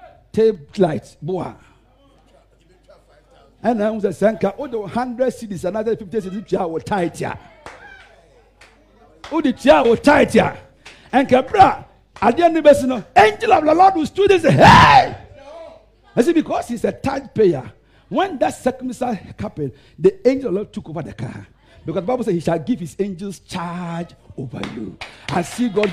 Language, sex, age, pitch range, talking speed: English, male, 50-69, 160-255 Hz, 165 wpm